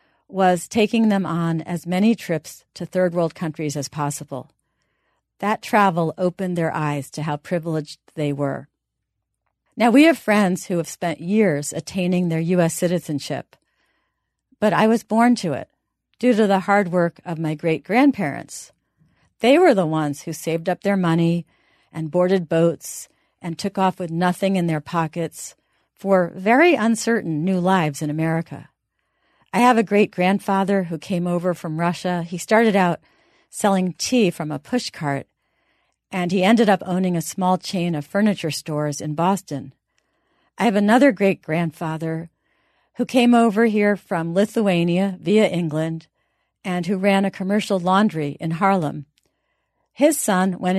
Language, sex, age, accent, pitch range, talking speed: English, female, 50-69, American, 160-205 Hz, 150 wpm